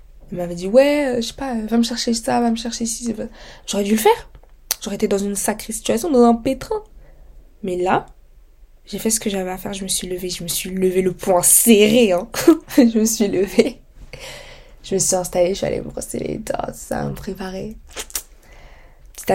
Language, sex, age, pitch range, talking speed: French, female, 20-39, 185-240 Hz, 215 wpm